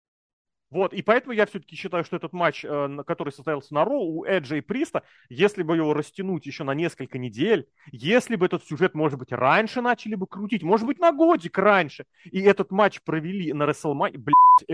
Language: Russian